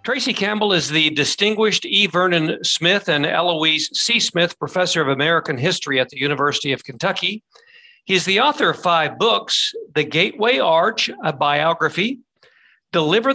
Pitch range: 155-210 Hz